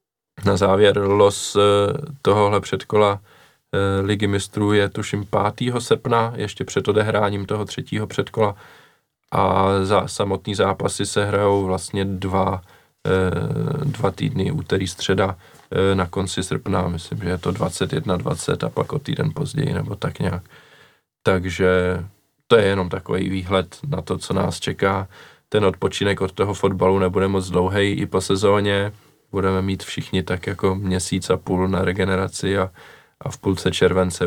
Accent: native